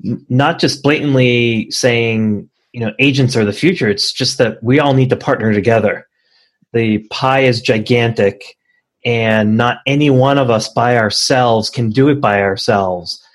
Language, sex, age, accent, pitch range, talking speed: English, male, 30-49, American, 110-140 Hz, 160 wpm